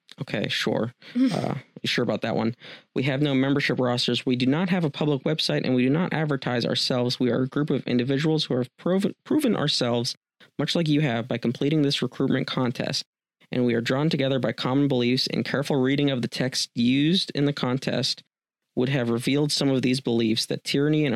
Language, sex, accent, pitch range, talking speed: English, male, American, 125-145 Hz, 205 wpm